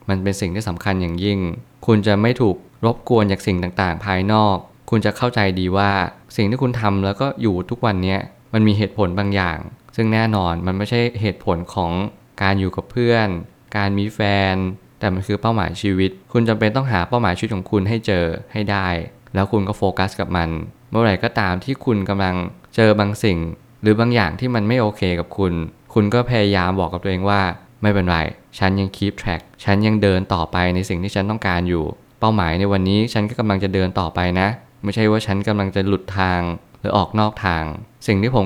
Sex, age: male, 20-39